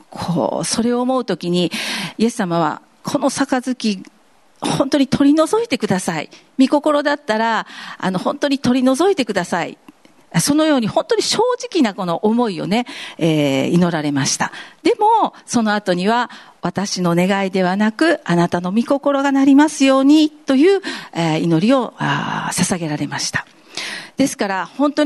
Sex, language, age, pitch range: female, Japanese, 50-69, 180-270 Hz